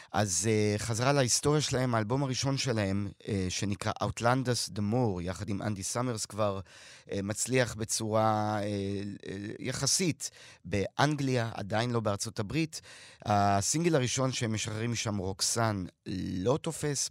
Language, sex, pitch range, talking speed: Hebrew, male, 100-120 Hz, 125 wpm